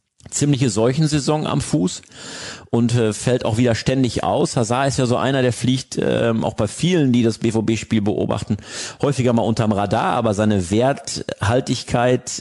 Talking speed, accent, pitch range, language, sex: 160 wpm, German, 100-120 Hz, German, male